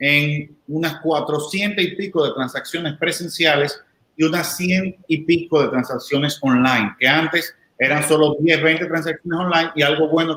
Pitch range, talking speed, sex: 140-165 Hz, 155 wpm, male